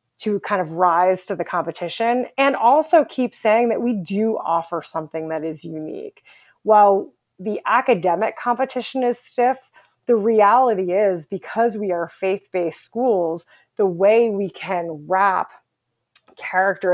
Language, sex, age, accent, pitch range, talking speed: English, female, 30-49, American, 170-220 Hz, 140 wpm